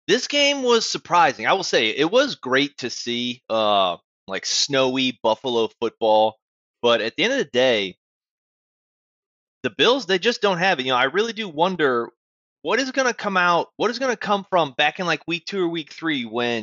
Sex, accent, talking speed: male, American, 210 wpm